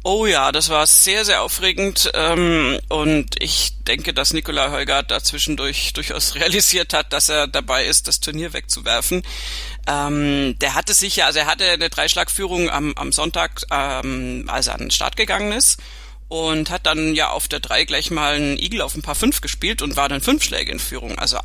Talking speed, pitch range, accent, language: 180 wpm, 150-185 Hz, German, German